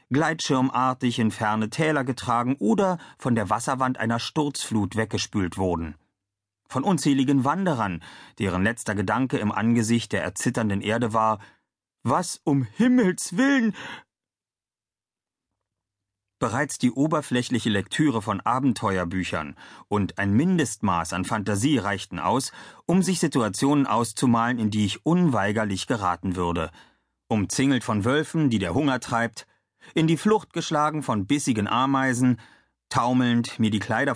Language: German